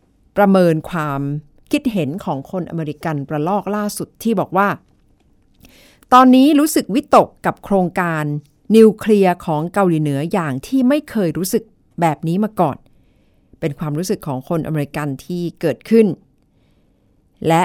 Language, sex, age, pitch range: Thai, female, 60-79, 155-210 Hz